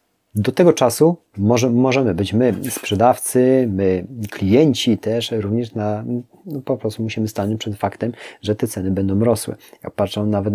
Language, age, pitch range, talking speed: Polish, 30-49, 100-115 Hz, 150 wpm